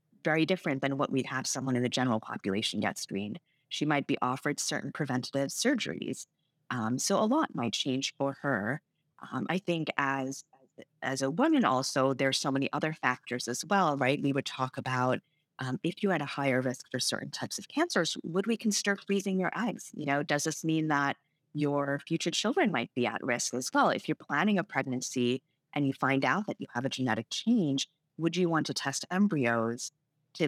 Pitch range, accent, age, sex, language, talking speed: 135-170 Hz, American, 30-49, female, English, 205 wpm